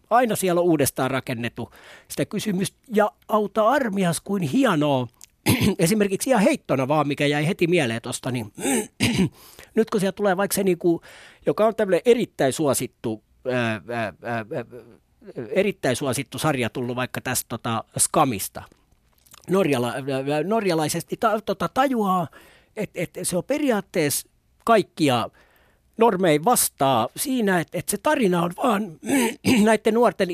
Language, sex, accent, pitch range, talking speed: Finnish, male, native, 140-200 Hz, 130 wpm